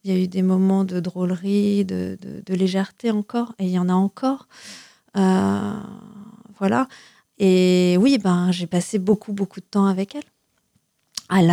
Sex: female